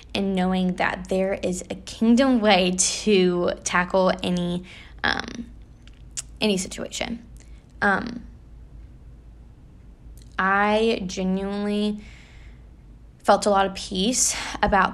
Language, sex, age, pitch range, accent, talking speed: English, female, 10-29, 185-215 Hz, American, 90 wpm